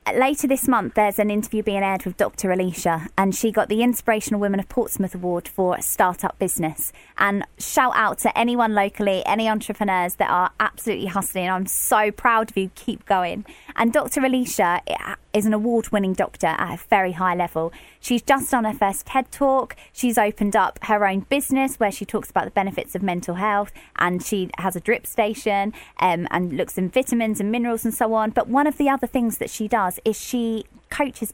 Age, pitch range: 20-39, 195-250 Hz